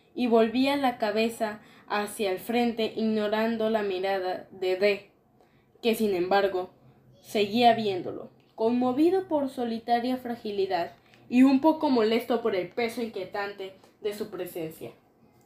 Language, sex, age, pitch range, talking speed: Spanish, female, 10-29, 210-250 Hz, 125 wpm